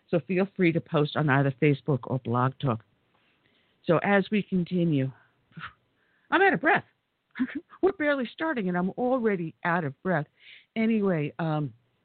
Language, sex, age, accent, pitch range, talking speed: English, female, 60-79, American, 145-185 Hz, 150 wpm